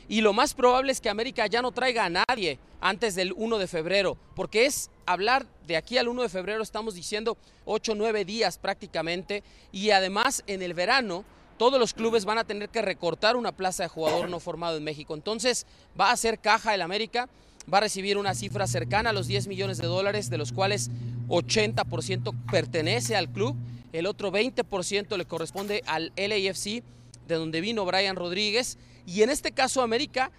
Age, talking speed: 30-49, 190 wpm